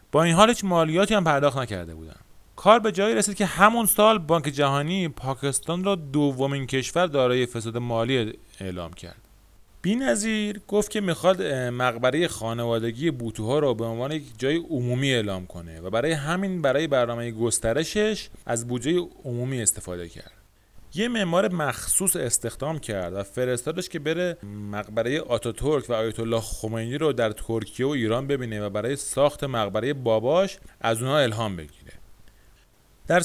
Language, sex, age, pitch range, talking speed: Persian, male, 30-49, 110-160 Hz, 150 wpm